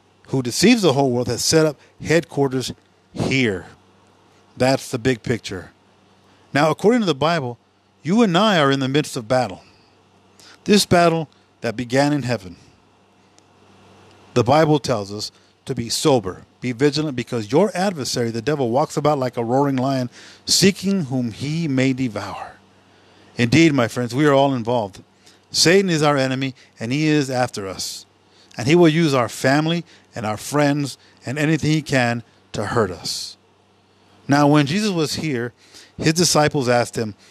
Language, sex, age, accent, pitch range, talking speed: English, male, 50-69, American, 105-145 Hz, 160 wpm